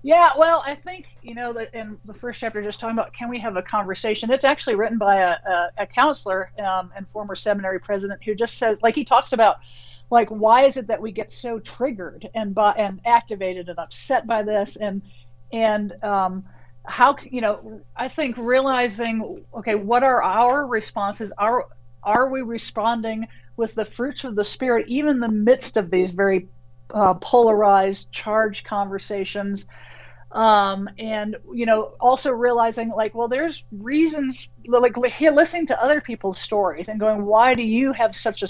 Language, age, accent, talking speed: English, 50-69, American, 180 wpm